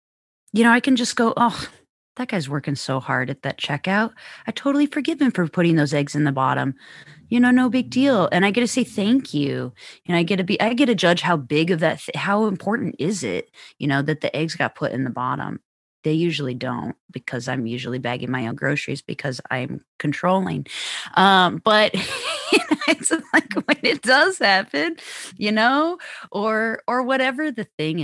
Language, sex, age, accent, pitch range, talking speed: English, female, 20-39, American, 145-210 Hz, 205 wpm